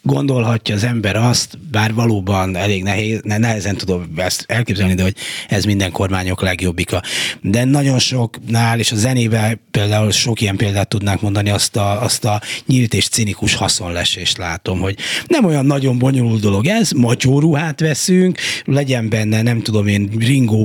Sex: male